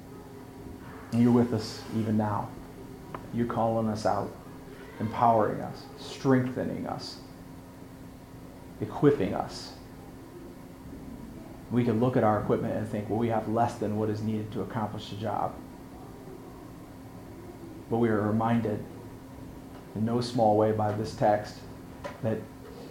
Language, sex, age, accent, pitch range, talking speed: English, male, 40-59, American, 105-125 Hz, 125 wpm